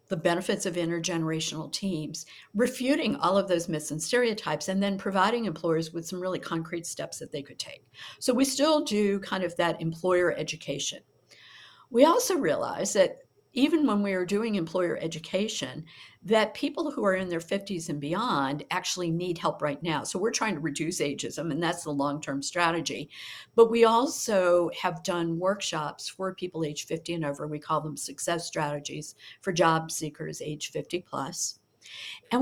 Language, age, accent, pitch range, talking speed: English, 50-69, American, 155-205 Hz, 175 wpm